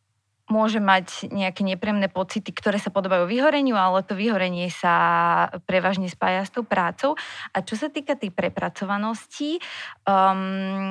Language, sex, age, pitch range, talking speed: Slovak, female, 20-39, 180-215 Hz, 140 wpm